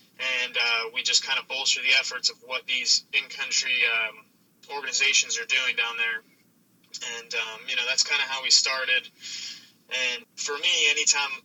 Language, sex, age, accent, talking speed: English, male, 20-39, American, 170 wpm